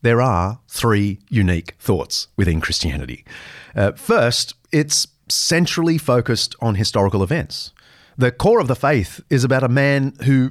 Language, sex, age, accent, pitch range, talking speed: English, male, 40-59, Australian, 100-140 Hz, 145 wpm